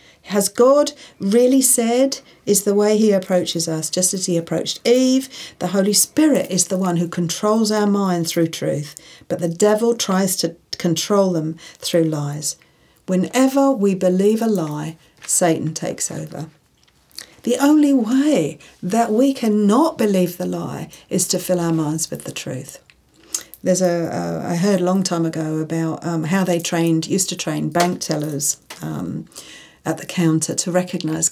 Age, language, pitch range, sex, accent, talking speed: 50-69, English, 165-205 Hz, female, British, 165 wpm